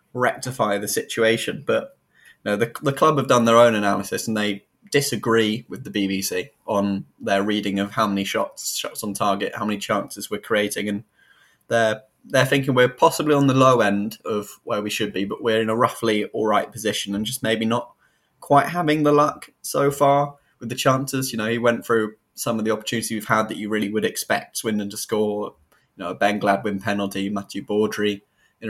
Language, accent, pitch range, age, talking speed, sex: English, British, 100-125 Hz, 10-29, 205 wpm, male